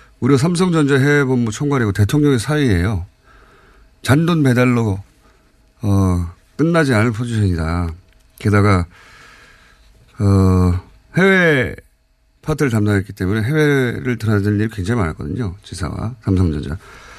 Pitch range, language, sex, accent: 95-135 Hz, Korean, male, native